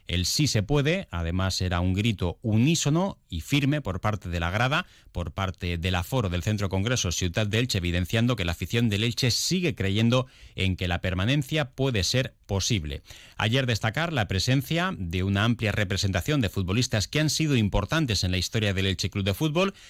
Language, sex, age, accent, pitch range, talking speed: Spanish, male, 30-49, Spanish, 90-130 Hz, 190 wpm